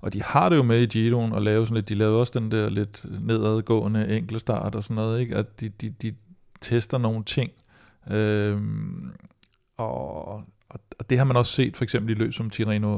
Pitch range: 105-120 Hz